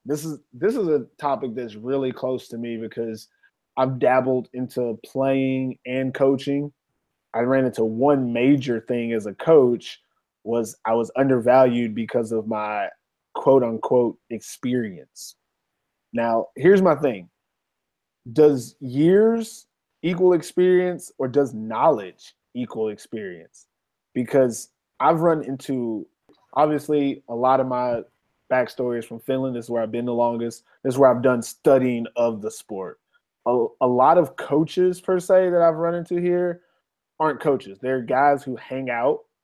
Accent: American